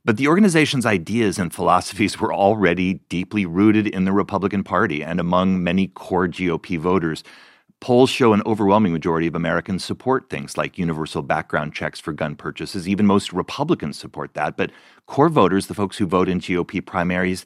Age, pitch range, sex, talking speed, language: 30-49, 85-110 Hz, male, 175 wpm, English